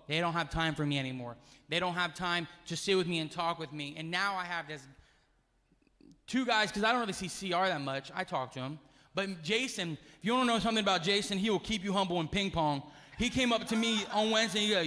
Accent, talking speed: American, 265 wpm